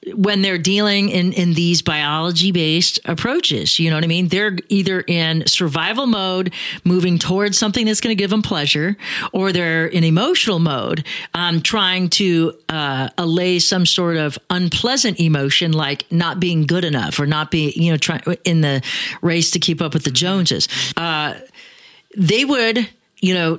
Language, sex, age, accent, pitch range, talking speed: English, female, 40-59, American, 165-205 Hz, 170 wpm